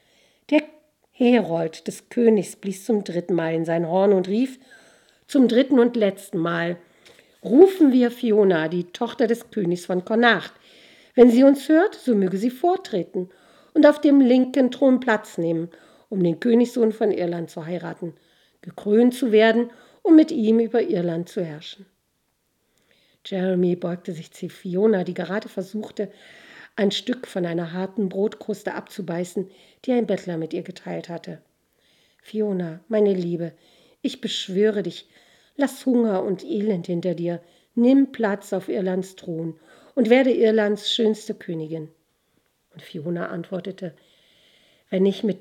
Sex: female